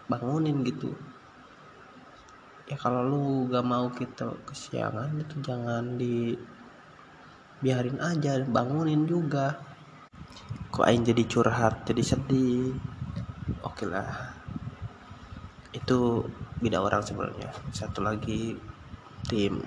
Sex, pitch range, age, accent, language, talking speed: male, 110-130 Hz, 20-39, native, Indonesian, 100 wpm